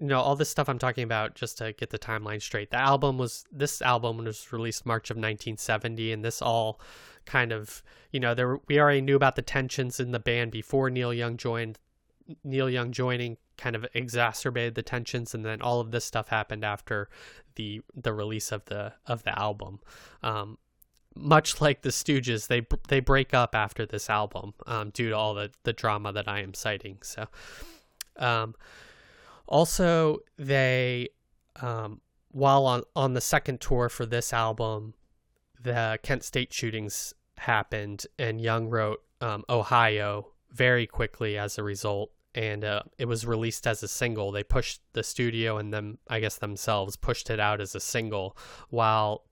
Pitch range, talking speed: 105-125 Hz, 180 wpm